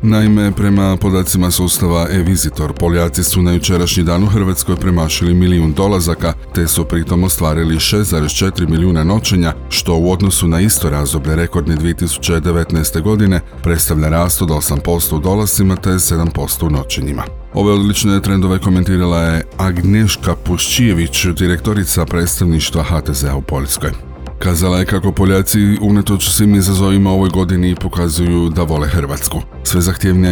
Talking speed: 135 wpm